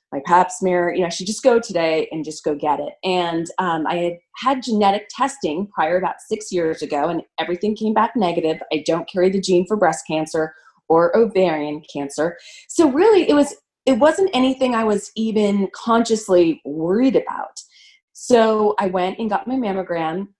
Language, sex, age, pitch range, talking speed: English, female, 30-49, 165-225 Hz, 185 wpm